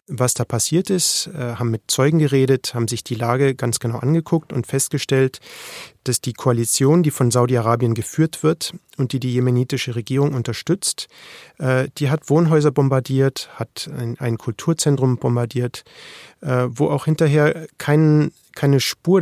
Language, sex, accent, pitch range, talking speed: German, male, German, 125-150 Hz, 140 wpm